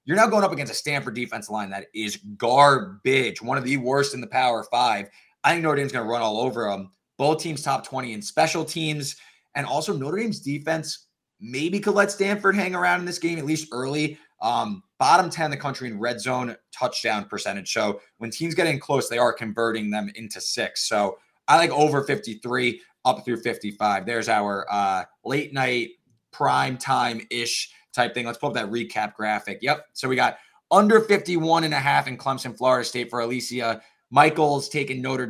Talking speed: 200 wpm